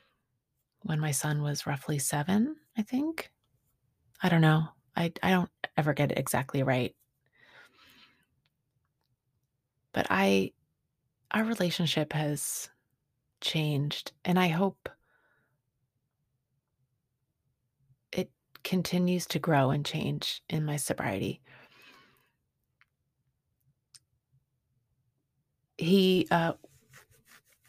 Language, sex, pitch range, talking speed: English, female, 135-170 Hz, 80 wpm